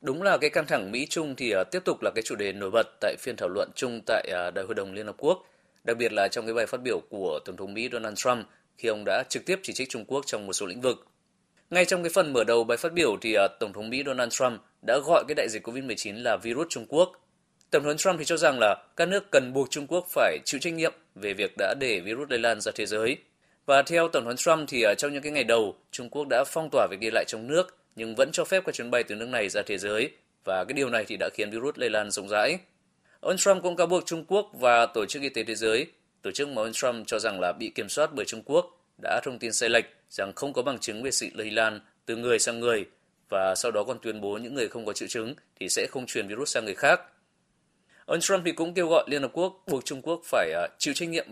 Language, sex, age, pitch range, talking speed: Vietnamese, male, 20-39, 115-180 Hz, 275 wpm